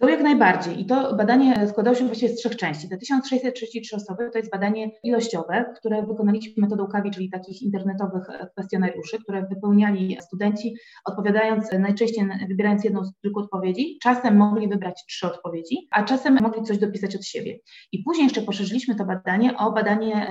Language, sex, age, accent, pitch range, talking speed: Polish, female, 30-49, native, 195-230 Hz, 170 wpm